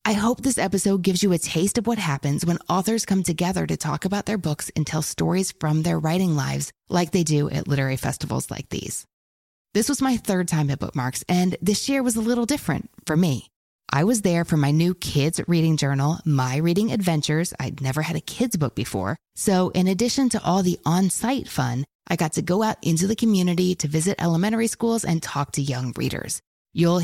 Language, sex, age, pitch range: English, female, 20-39, 145-190 Hz